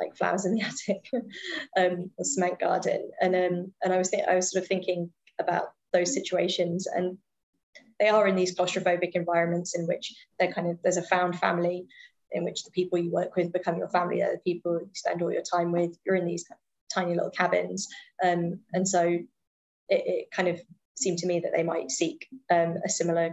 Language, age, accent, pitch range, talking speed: English, 20-39, British, 175-205 Hz, 210 wpm